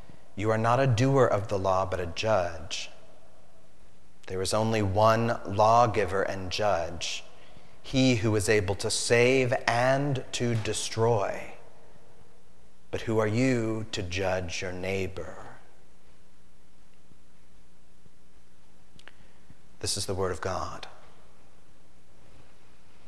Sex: male